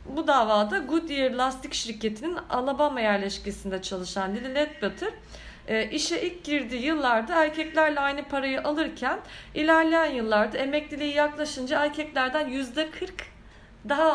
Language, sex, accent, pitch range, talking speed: Turkish, female, native, 215-295 Hz, 105 wpm